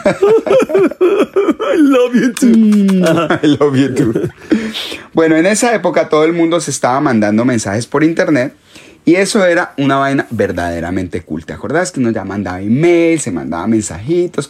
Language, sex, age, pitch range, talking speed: Spanish, male, 30-49, 115-175 Hz, 155 wpm